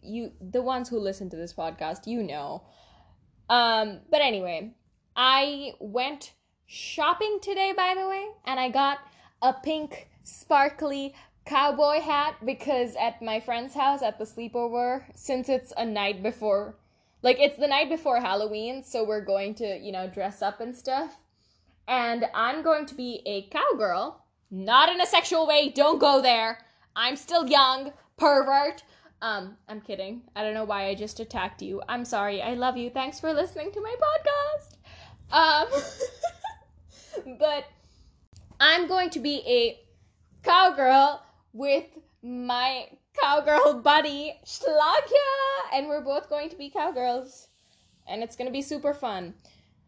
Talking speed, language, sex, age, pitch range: 150 wpm, English, female, 10-29, 225-295 Hz